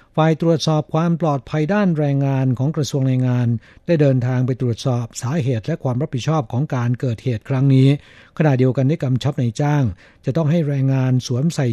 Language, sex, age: Thai, male, 60-79